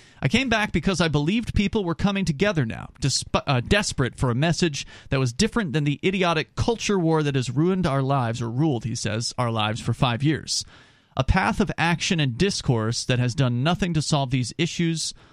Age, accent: 30-49, American